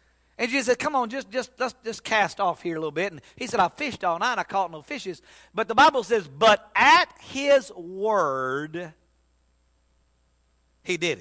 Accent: American